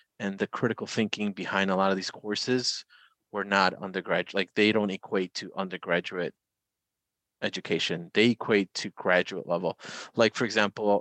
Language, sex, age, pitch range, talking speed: English, male, 30-49, 95-115 Hz, 155 wpm